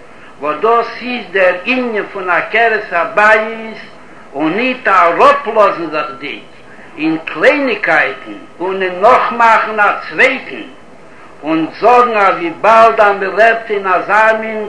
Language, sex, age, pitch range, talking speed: Hebrew, male, 60-79, 195-245 Hz, 125 wpm